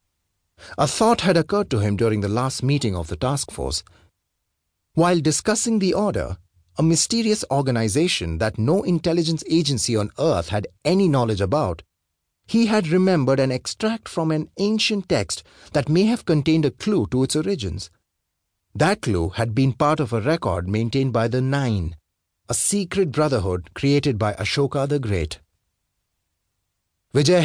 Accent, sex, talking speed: Indian, male, 155 wpm